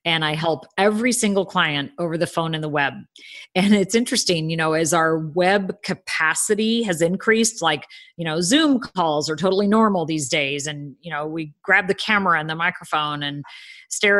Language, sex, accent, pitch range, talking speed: English, female, American, 160-210 Hz, 190 wpm